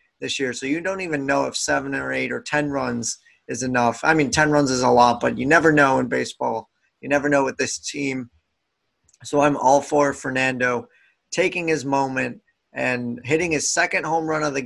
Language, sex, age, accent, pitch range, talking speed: English, male, 20-39, American, 120-145 Hz, 210 wpm